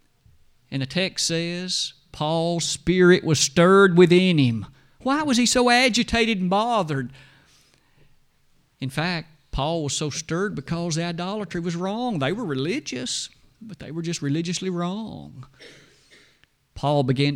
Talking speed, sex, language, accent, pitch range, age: 135 wpm, male, English, American, 140-190 Hz, 50-69